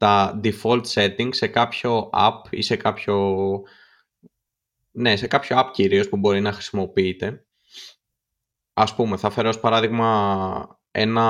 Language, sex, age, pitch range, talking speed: Greek, male, 20-39, 105-145 Hz, 125 wpm